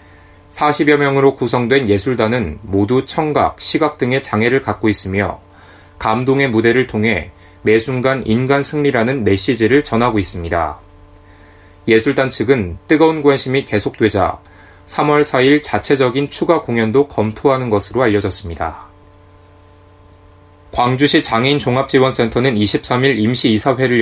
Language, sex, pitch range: Korean, male, 100-140 Hz